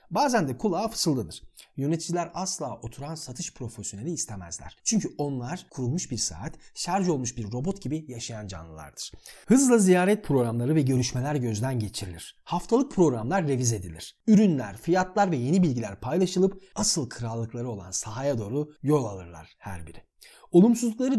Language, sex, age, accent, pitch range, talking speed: Turkish, male, 40-59, native, 120-195 Hz, 140 wpm